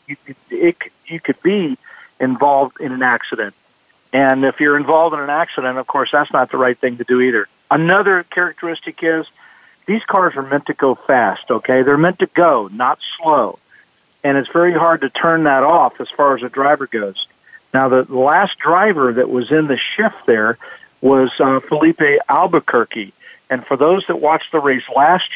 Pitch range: 130-160 Hz